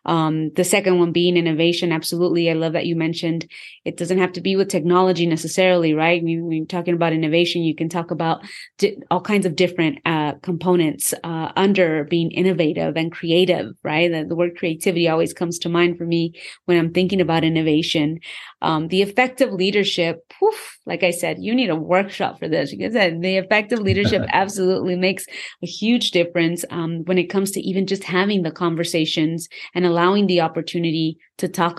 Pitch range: 160-185 Hz